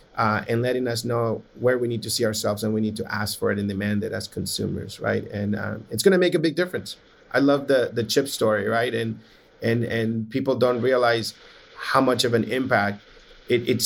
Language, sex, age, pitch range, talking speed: English, male, 30-49, 110-140 Hz, 230 wpm